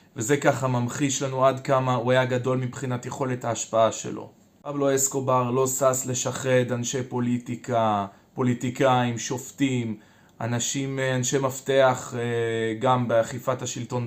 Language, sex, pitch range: Hebrew, male, 125-150 Hz